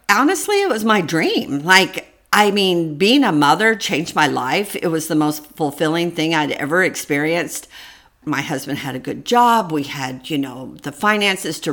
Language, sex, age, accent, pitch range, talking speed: English, female, 50-69, American, 155-205 Hz, 185 wpm